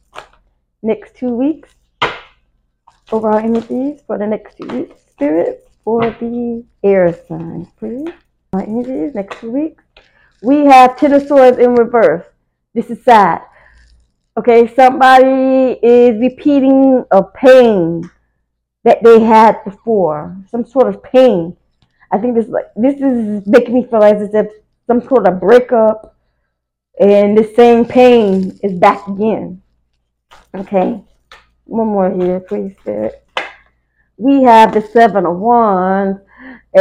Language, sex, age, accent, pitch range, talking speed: English, female, 20-39, American, 195-250 Hz, 125 wpm